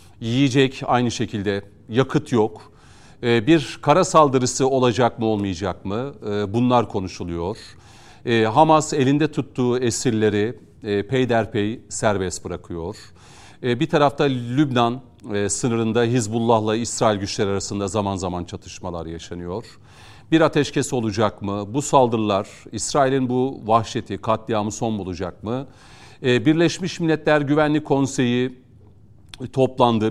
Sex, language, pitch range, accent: male, Turkish, 105-140 Hz, native